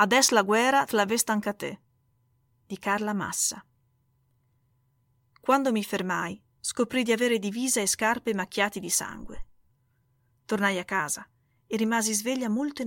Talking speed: 135 wpm